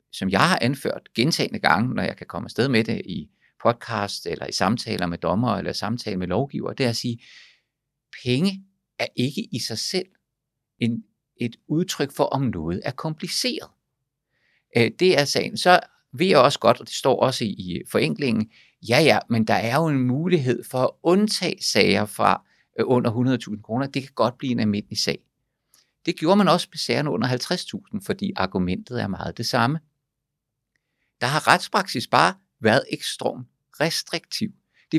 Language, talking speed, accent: Danish, 175 wpm, native